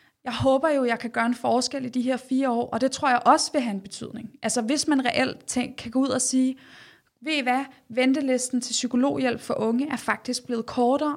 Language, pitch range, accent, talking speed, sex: Danish, 220-255 Hz, native, 240 wpm, female